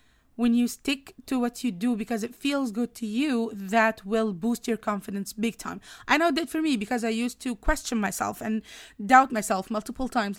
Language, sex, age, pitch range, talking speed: English, female, 20-39, 210-255 Hz, 210 wpm